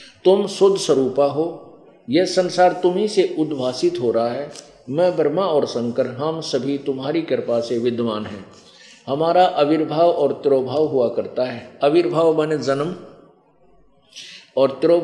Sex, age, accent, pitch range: male, 50-69, native, 125-160 Hz